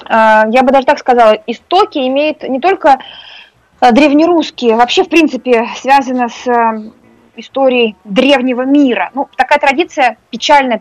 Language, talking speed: Russian, 120 wpm